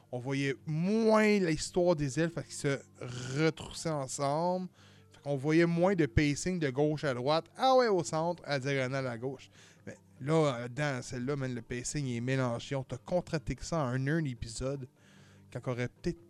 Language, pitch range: French, 120-170 Hz